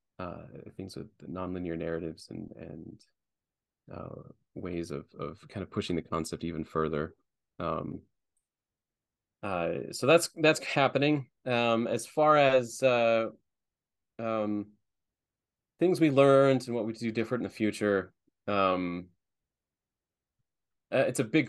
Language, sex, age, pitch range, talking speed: English, male, 20-39, 90-115 Hz, 130 wpm